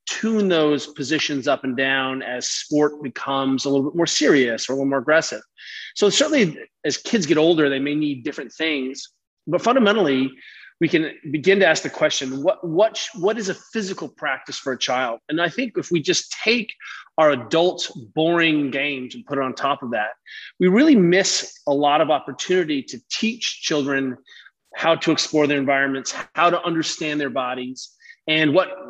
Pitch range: 140-185 Hz